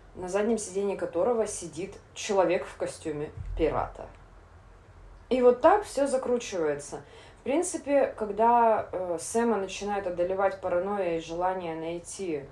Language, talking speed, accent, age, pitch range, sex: Russian, 120 wpm, native, 20-39, 165-215 Hz, female